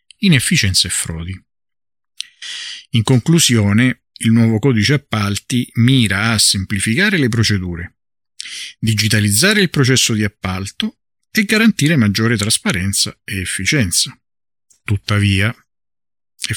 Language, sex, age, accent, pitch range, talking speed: Italian, male, 50-69, native, 95-125 Hz, 100 wpm